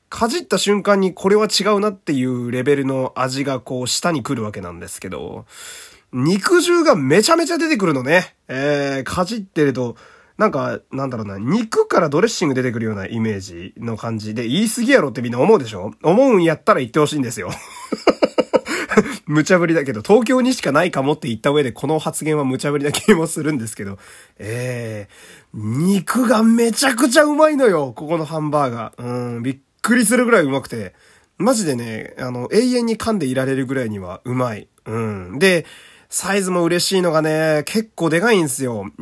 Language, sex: Japanese, male